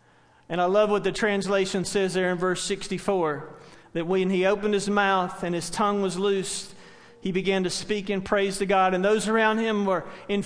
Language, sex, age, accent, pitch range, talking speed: English, male, 40-59, American, 190-235 Hz, 205 wpm